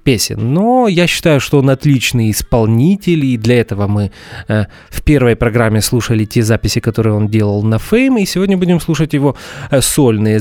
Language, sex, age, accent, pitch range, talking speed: Russian, male, 20-39, native, 115-170 Hz, 165 wpm